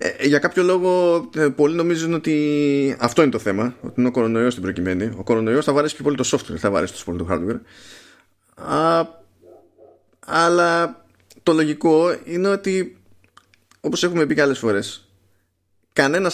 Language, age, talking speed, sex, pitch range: Greek, 20-39, 155 wpm, male, 105-145 Hz